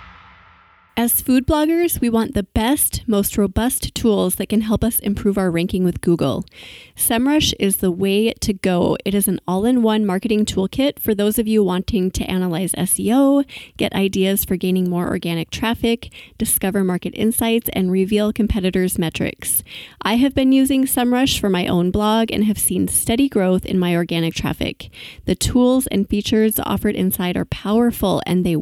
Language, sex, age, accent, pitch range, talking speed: English, female, 20-39, American, 185-230 Hz, 170 wpm